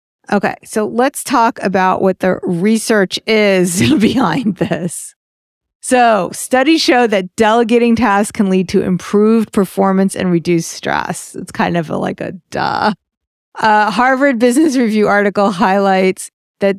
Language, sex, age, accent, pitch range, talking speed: English, female, 40-59, American, 185-225 Hz, 135 wpm